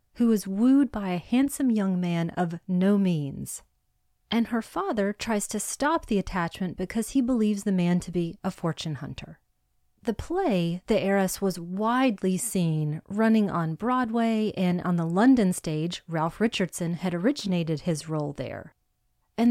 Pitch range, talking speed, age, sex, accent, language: 170-220 Hz, 160 wpm, 30-49, female, American, English